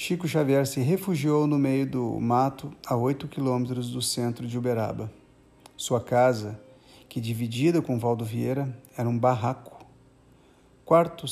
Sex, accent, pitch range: male, Brazilian, 120-145 Hz